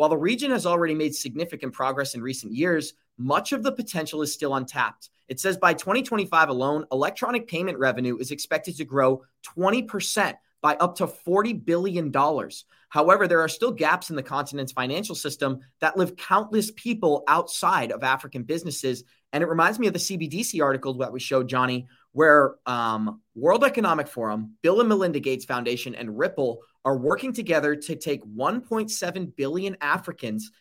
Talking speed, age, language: 170 wpm, 30-49, English